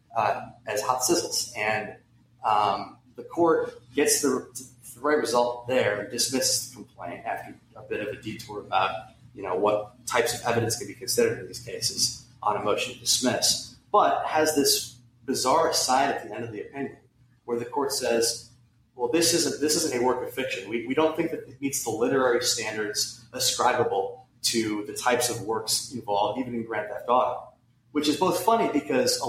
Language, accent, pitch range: English, American, 115-130 Hz